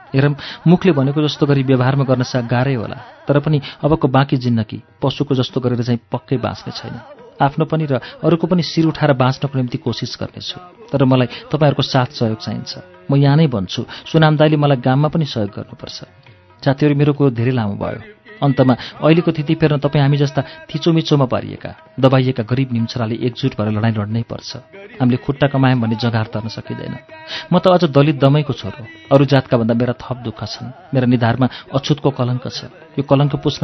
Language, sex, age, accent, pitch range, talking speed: English, male, 40-59, Indian, 120-150 Hz, 100 wpm